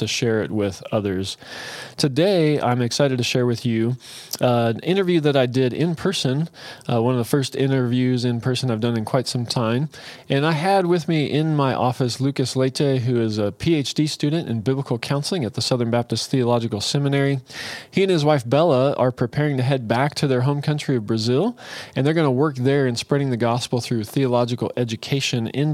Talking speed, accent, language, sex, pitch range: 205 wpm, American, English, male, 120-145 Hz